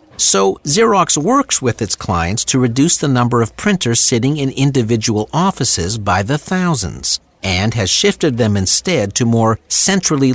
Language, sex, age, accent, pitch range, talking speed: English, male, 50-69, American, 105-155 Hz, 155 wpm